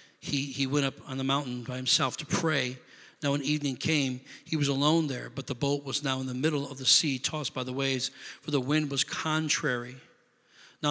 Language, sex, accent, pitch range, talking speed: English, male, American, 135-155 Hz, 220 wpm